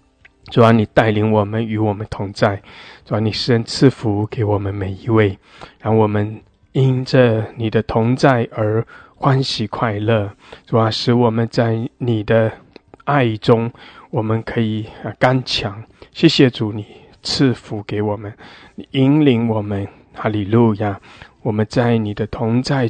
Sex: male